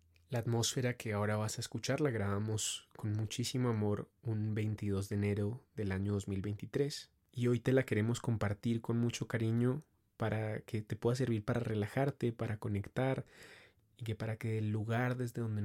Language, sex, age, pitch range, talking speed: Spanish, male, 20-39, 105-120 Hz, 175 wpm